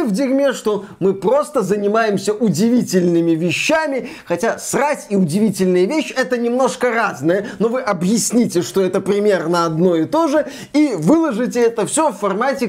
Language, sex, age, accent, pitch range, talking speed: Russian, male, 20-39, native, 175-220 Hz, 150 wpm